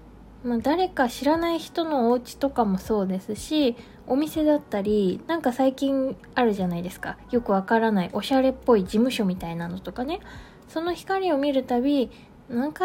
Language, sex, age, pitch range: Japanese, female, 20-39, 205-280 Hz